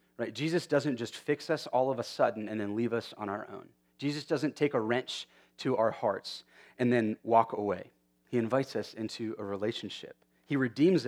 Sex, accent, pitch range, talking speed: male, American, 100-140 Hz, 195 wpm